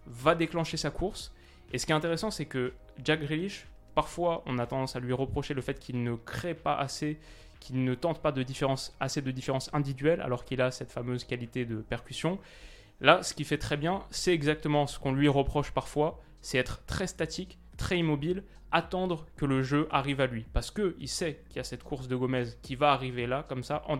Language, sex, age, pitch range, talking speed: French, male, 20-39, 125-155 Hz, 225 wpm